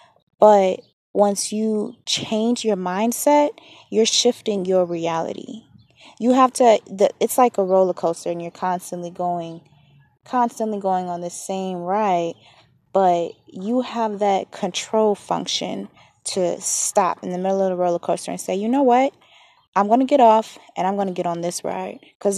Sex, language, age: female, English, 20-39